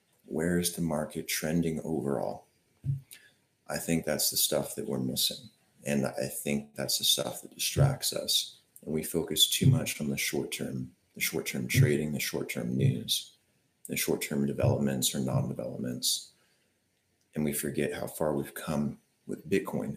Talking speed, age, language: 155 wpm, 30-49, English